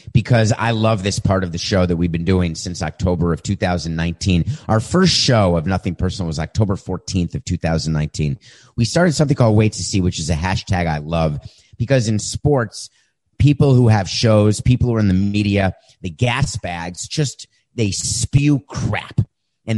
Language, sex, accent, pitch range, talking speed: English, male, American, 95-125 Hz, 185 wpm